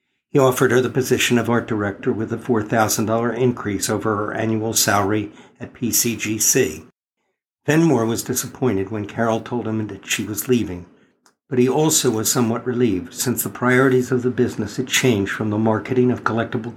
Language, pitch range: English, 105-125 Hz